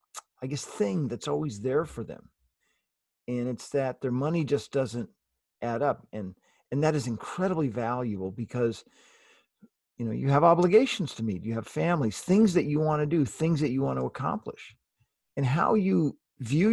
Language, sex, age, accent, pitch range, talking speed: English, male, 40-59, American, 115-165 Hz, 180 wpm